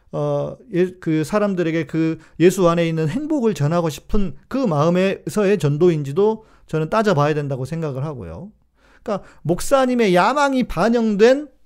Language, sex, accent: Korean, male, native